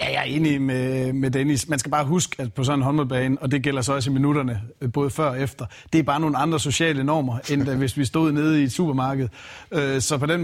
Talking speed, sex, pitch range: 255 wpm, male, 135-155 Hz